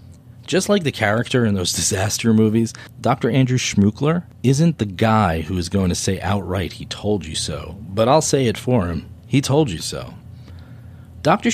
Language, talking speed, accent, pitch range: English, 180 wpm, American, 95-120 Hz